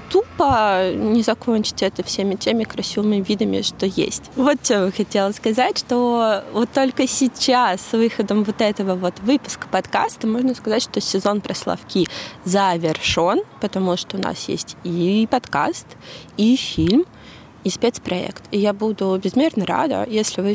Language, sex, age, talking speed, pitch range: Russian, female, 20-39, 145 wpm, 200-245 Hz